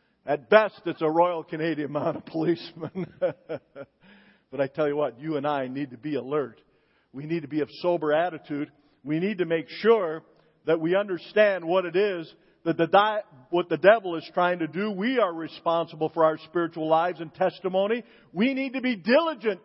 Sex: male